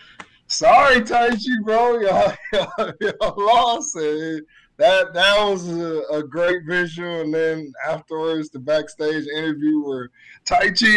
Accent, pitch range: American, 155-230 Hz